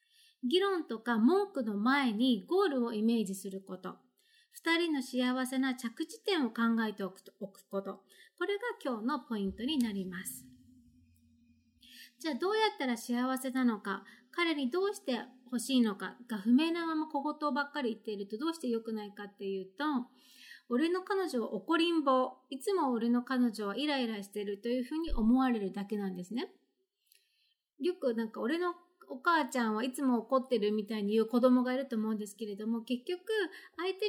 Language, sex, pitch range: Japanese, female, 225-325 Hz